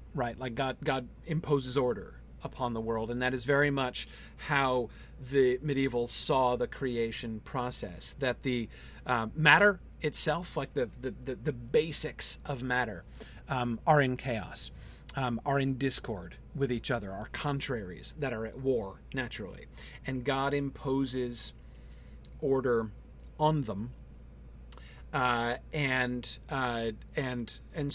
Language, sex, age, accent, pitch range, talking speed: English, male, 40-59, American, 120-150 Hz, 135 wpm